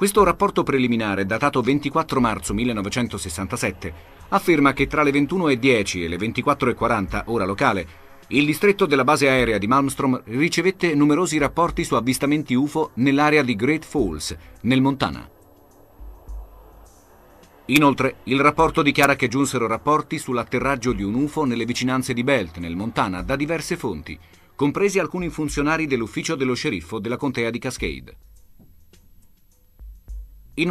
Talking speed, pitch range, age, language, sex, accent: 130 wpm, 100-150 Hz, 40-59, Italian, male, native